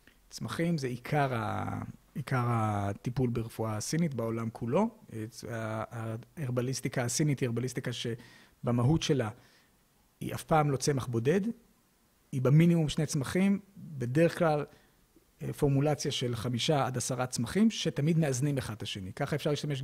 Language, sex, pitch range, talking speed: Hebrew, male, 120-150 Hz, 125 wpm